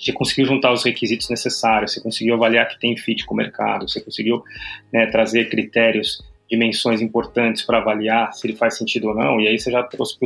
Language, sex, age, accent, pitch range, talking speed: Portuguese, male, 20-39, Brazilian, 110-135 Hz, 210 wpm